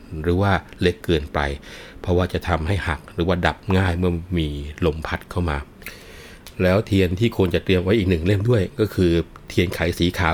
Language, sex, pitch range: Thai, male, 85-100 Hz